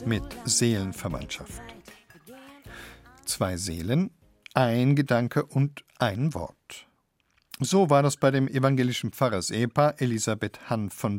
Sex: male